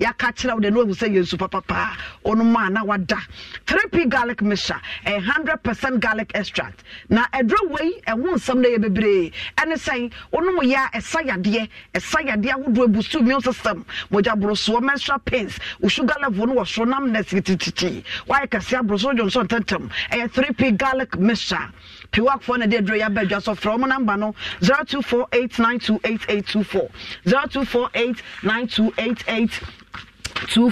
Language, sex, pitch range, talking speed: English, female, 210-270 Hz, 175 wpm